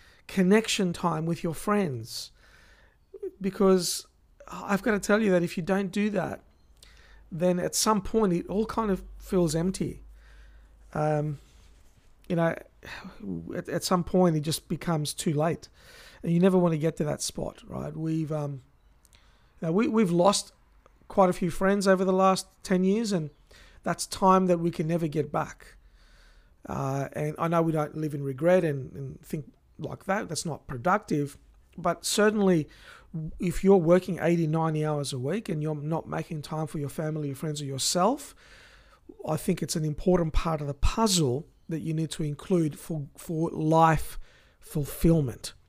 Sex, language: male, English